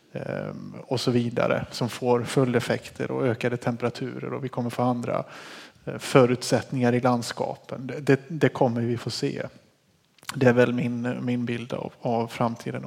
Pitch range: 125-145 Hz